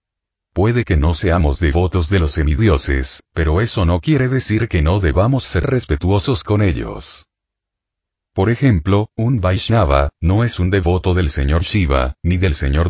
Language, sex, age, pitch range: Spanish, male, 40-59, 80-105 Hz